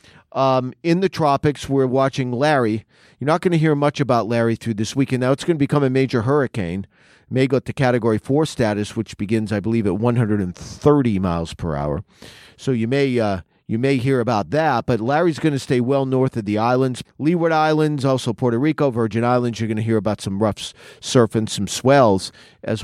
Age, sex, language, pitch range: 40-59, male, English, 110-140 Hz